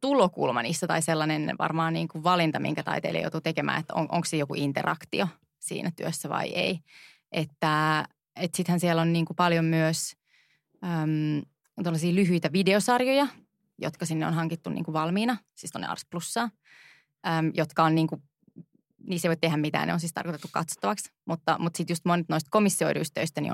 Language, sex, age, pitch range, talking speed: Finnish, female, 20-39, 160-180 Hz, 165 wpm